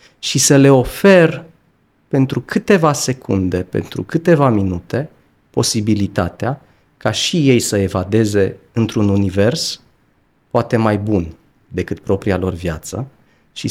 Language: Romanian